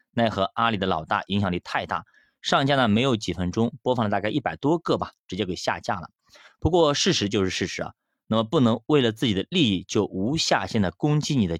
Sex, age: male, 30-49